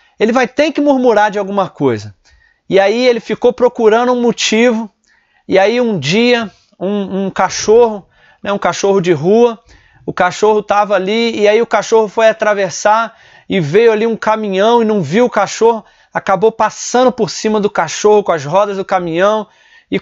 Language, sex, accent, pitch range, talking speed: Portuguese, male, Brazilian, 185-225 Hz, 175 wpm